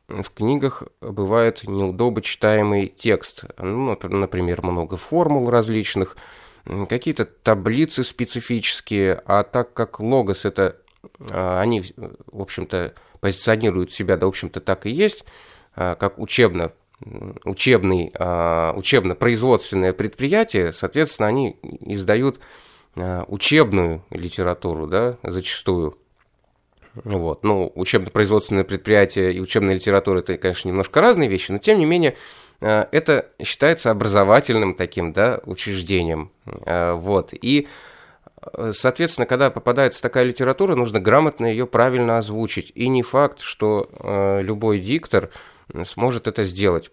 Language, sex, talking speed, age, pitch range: Russian, male, 105 wpm, 20-39, 95-120 Hz